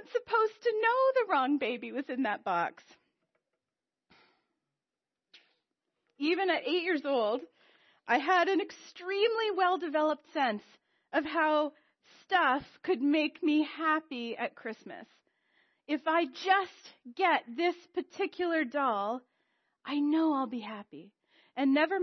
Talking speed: 120 wpm